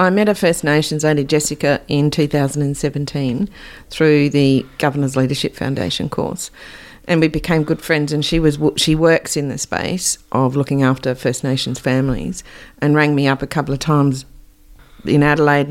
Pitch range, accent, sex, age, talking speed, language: 135-155 Hz, Australian, female, 50-69, 170 wpm, English